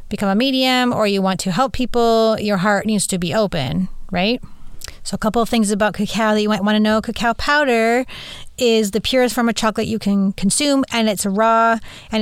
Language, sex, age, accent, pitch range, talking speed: English, female, 30-49, American, 190-220 Hz, 215 wpm